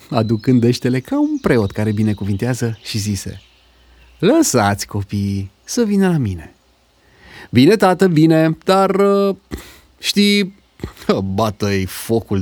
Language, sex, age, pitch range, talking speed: Romanian, male, 30-49, 90-120 Hz, 105 wpm